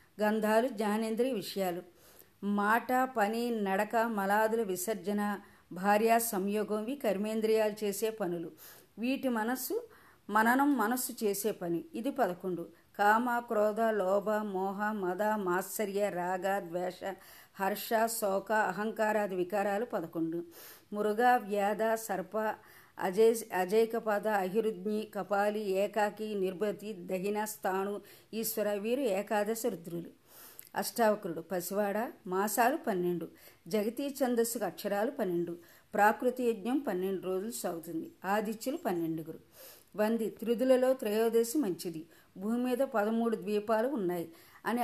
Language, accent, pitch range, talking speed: Telugu, native, 190-230 Hz, 100 wpm